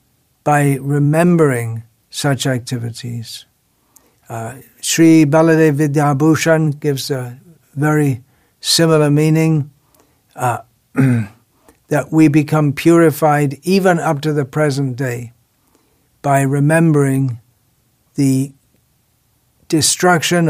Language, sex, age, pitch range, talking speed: English, male, 60-79, 130-165 Hz, 80 wpm